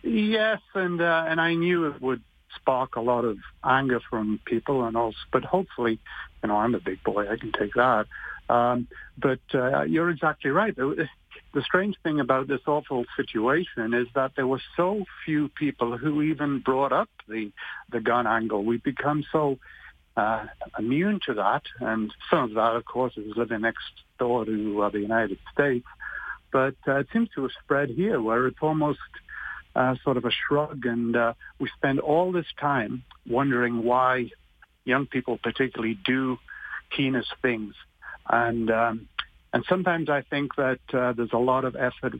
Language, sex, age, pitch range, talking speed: English, male, 60-79, 115-145 Hz, 175 wpm